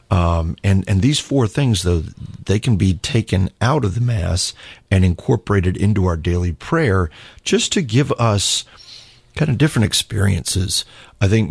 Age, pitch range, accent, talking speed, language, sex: 40-59, 85-105 Hz, American, 160 wpm, English, male